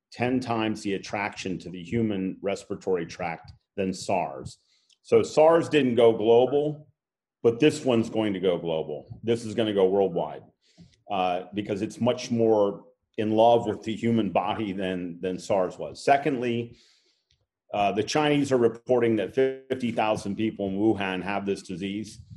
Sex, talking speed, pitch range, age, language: male, 155 wpm, 95-120 Hz, 40-59, Arabic